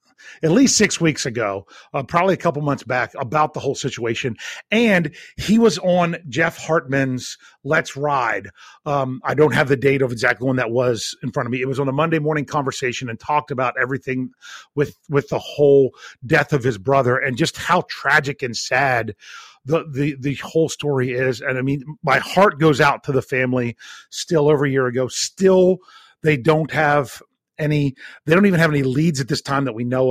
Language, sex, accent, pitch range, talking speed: English, male, American, 130-155 Hz, 200 wpm